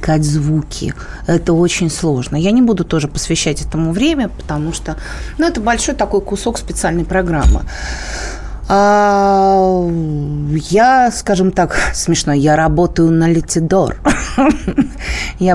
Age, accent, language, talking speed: 20-39, native, Russian, 115 wpm